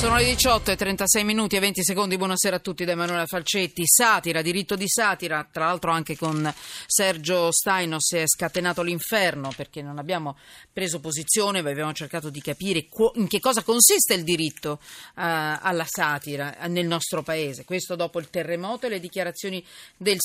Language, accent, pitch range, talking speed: Italian, native, 160-205 Hz, 170 wpm